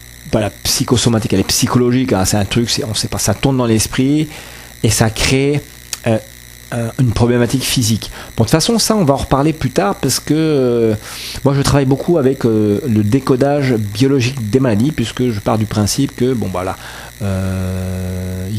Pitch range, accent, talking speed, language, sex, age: 105-130 Hz, French, 190 wpm, French, male, 40-59